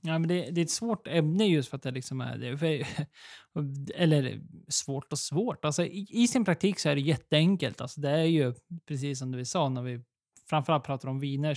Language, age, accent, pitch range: Swedish, 20-39, native, 130-165 Hz